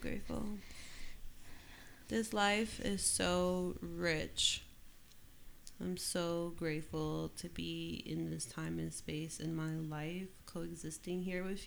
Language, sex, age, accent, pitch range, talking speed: English, female, 20-39, American, 150-175 Hz, 115 wpm